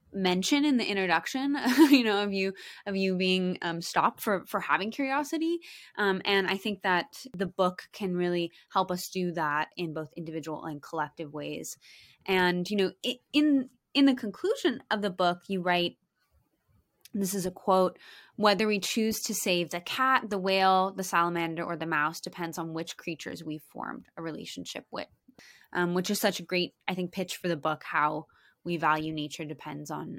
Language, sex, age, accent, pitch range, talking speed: English, female, 20-39, American, 175-230 Hz, 185 wpm